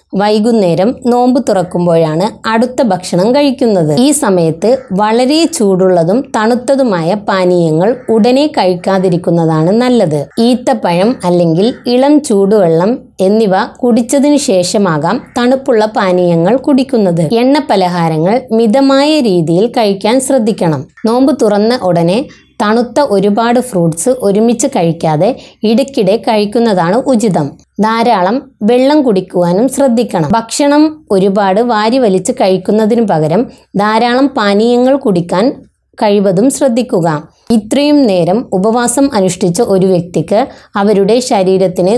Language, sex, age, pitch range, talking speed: Malayalam, female, 20-39, 185-250 Hz, 95 wpm